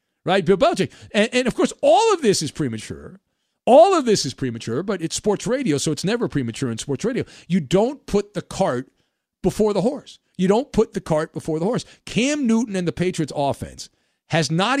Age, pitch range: 50-69, 140-205 Hz